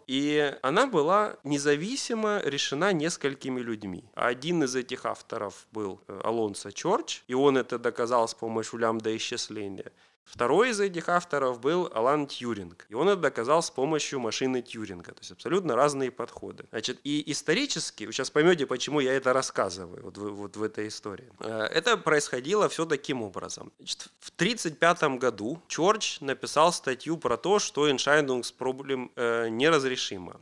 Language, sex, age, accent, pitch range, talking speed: Russian, male, 30-49, native, 125-165 Hz, 145 wpm